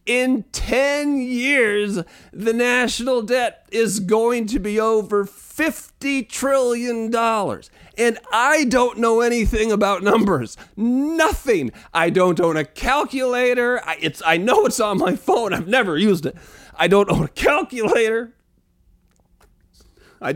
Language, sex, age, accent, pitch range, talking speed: English, male, 40-59, American, 160-260 Hz, 130 wpm